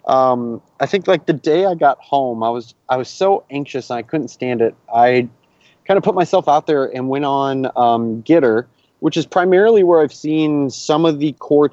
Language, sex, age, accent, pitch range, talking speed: English, male, 20-39, American, 115-145 Hz, 215 wpm